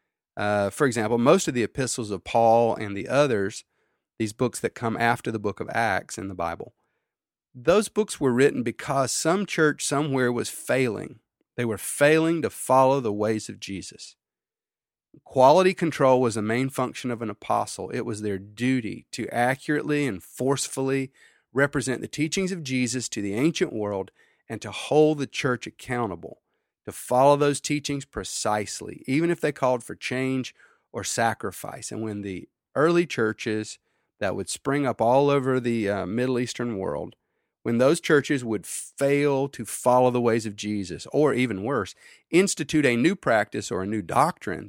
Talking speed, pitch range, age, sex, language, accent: 170 wpm, 110-140 Hz, 40-59, male, English, American